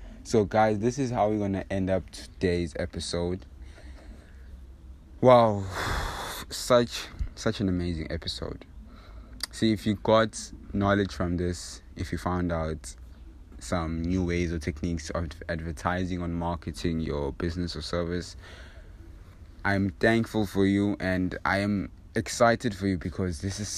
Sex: male